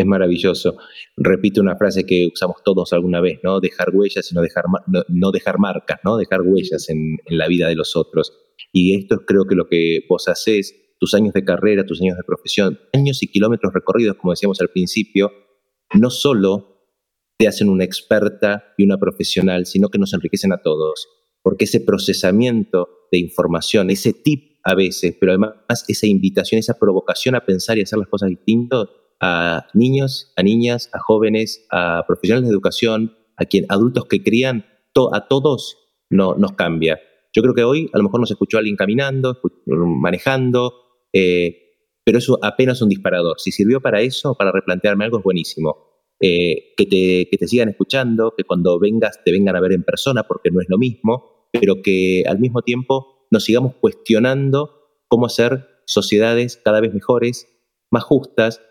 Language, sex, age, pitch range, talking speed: Spanish, male, 30-49, 95-120 Hz, 180 wpm